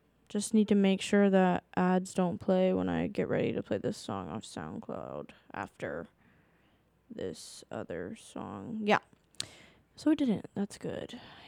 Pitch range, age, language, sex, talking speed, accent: 195-220 Hz, 10-29, English, female, 155 wpm, American